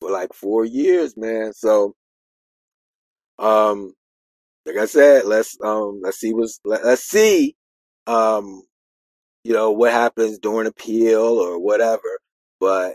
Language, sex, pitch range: English, male, 95-150 Hz